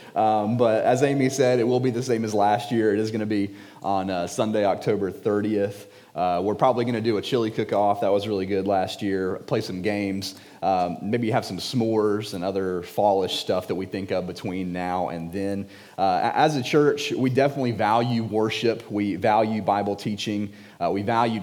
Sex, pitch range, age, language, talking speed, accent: male, 100-120 Hz, 30-49, English, 205 wpm, American